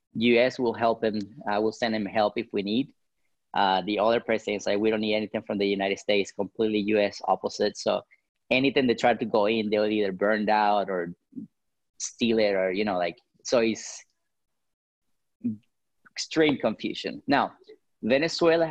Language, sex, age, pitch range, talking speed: English, male, 30-49, 105-120 Hz, 175 wpm